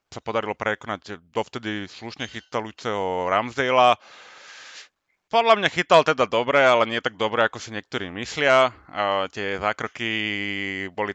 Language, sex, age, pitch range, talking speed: Slovak, male, 30-49, 95-120 Hz, 130 wpm